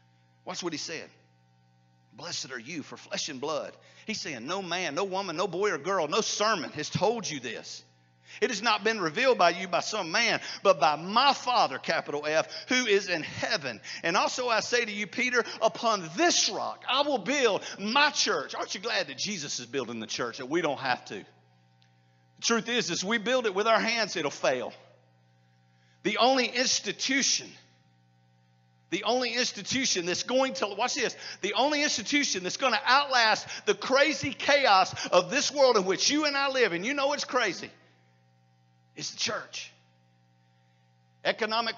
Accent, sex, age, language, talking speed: American, male, 50-69, English, 185 wpm